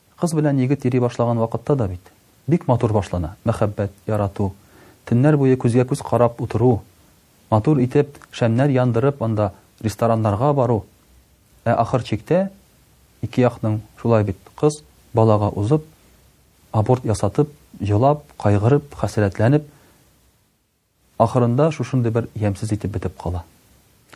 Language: Russian